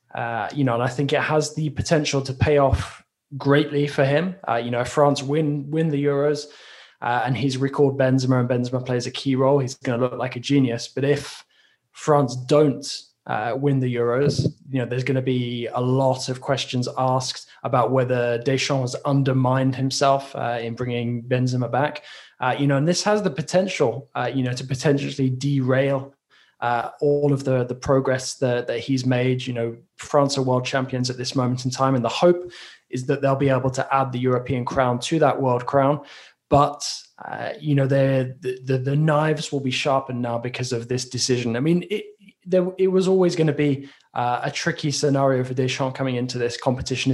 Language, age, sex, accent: English, 20-39, male, British